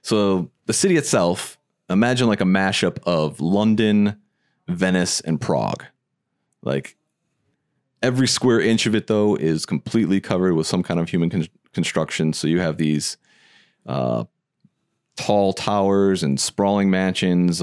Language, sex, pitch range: English, male, 80-105 Hz